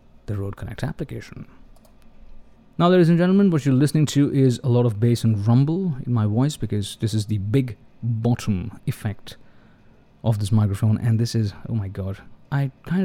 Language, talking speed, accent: English, 185 wpm, Indian